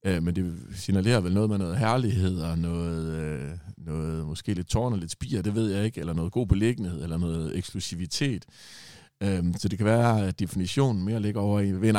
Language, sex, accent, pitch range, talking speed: Danish, male, native, 85-110 Hz, 195 wpm